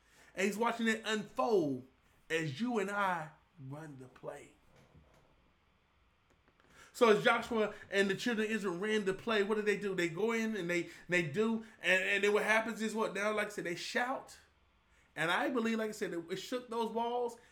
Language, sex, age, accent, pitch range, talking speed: English, male, 20-39, American, 145-215 Hz, 195 wpm